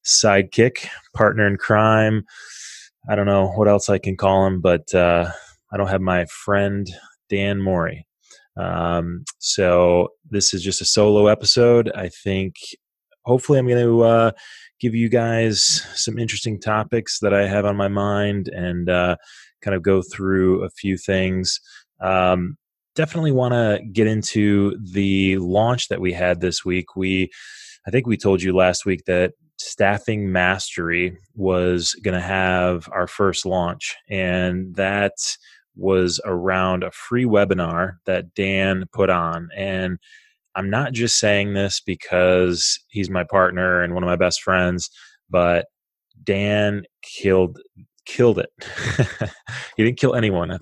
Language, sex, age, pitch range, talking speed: English, male, 20-39, 90-105 Hz, 150 wpm